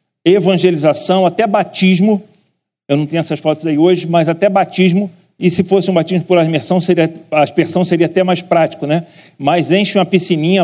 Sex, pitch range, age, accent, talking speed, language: male, 140-170 Hz, 40-59, Brazilian, 165 wpm, Portuguese